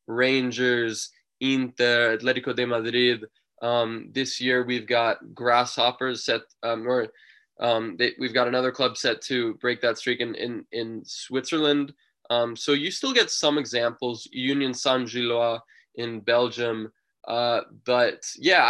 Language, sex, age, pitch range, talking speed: English, male, 20-39, 115-135 Hz, 140 wpm